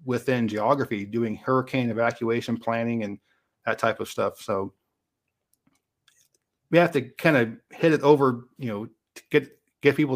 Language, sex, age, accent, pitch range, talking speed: English, male, 40-59, American, 110-130 Hz, 150 wpm